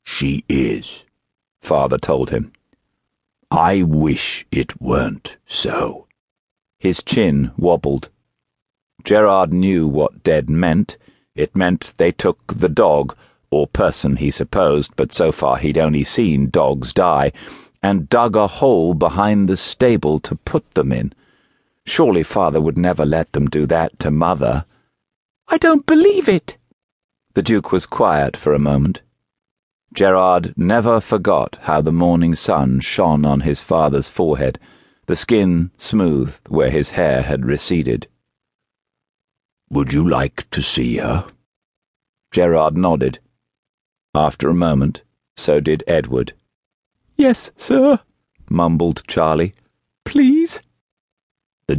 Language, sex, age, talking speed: English, male, 50-69, 125 wpm